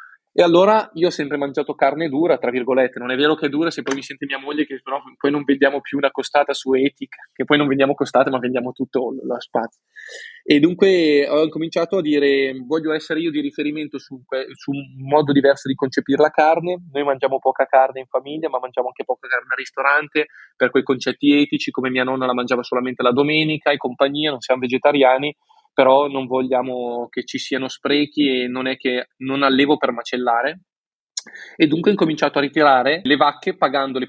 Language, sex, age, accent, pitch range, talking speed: Italian, male, 20-39, native, 130-155 Hz, 205 wpm